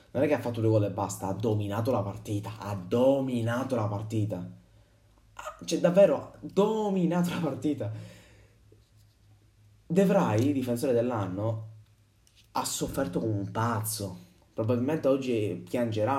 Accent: native